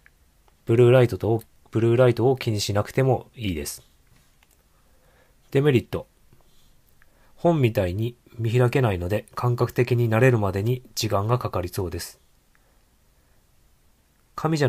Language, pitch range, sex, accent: Japanese, 100-125 Hz, male, native